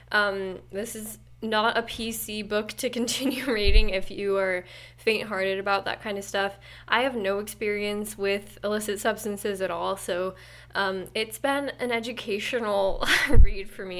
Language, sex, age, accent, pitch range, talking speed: English, female, 10-29, American, 185-225 Hz, 165 wpm